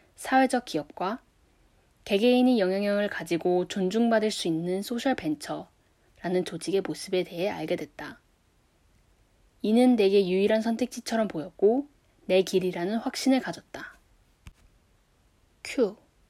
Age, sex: 10-29, female